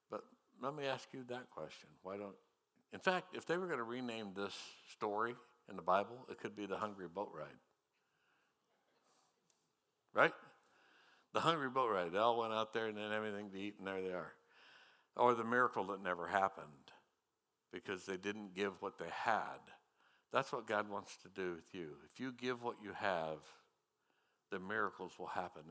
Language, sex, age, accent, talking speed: English, male, 60-79, American, 185 wpm